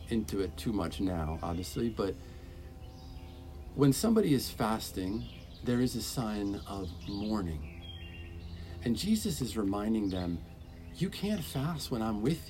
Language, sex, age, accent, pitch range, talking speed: English, male, 50-69, American, 80-130 Hz, 135 wpm